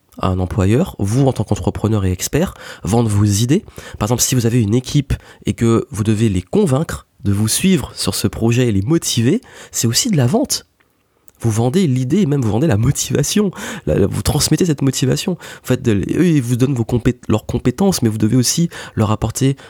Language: French